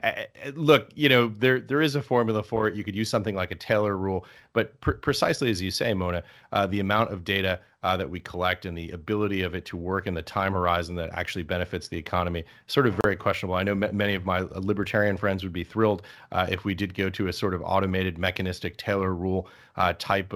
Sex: male